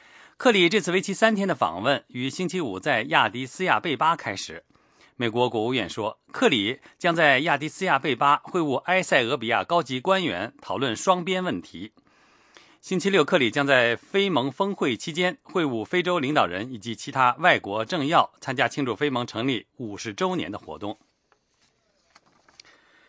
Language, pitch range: English, 135-185 Hz